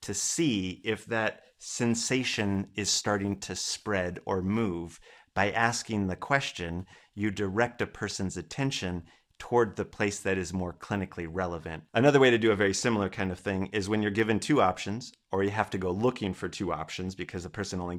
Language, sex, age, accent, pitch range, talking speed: English, male, 30-49, American, 95-120 Hz, 190 wpm